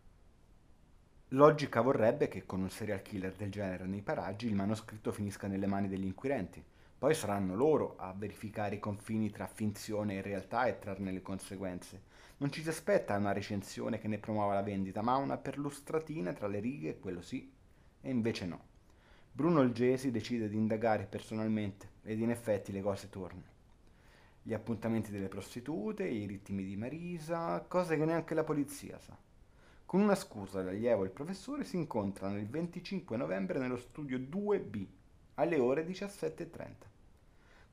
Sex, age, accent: male, 30-49, native